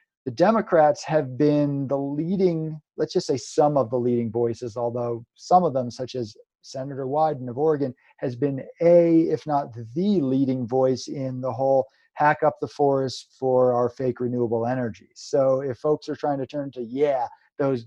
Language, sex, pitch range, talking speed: English, male, 130-150 Hz, 180 wpm